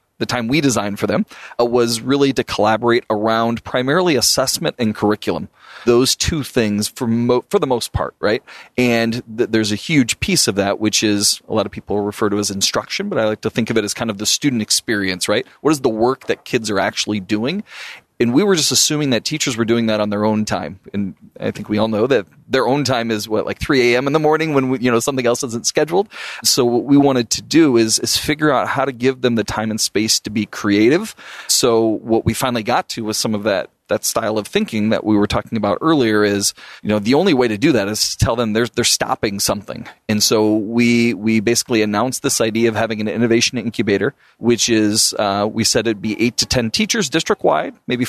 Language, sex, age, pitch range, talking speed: English, male, 30-49, 110-125 Hz, 235 wpm